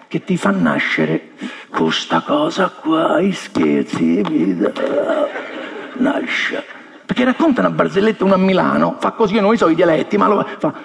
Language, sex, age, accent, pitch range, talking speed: Italian, male, 50-69, native, 220-295 Hz, 160 wpm